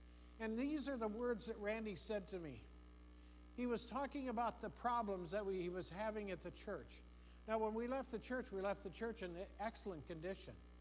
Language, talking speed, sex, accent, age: English, 205 wpm, male, American, 50-69